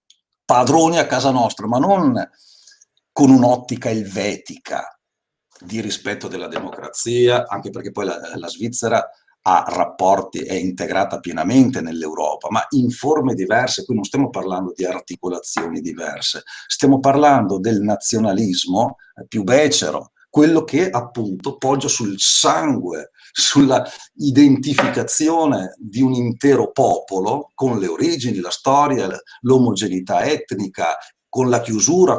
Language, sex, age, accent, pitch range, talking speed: Italian, male, 50-69, native, 105-140 Hz, 120 wpm